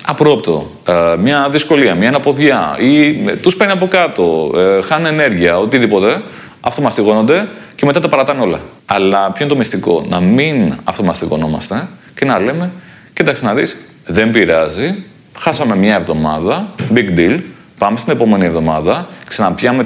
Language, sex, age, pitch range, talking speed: Greek, male, 30-49, 90-135 Hz, 145 wpm